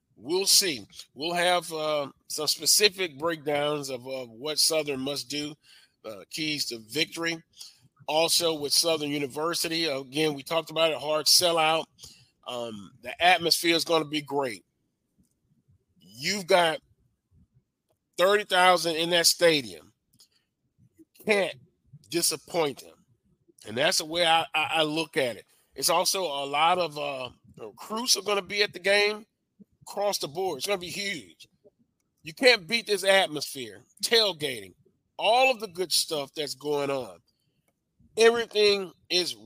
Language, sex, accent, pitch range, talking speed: English, male, American, 145-185 Hz, 145 wpm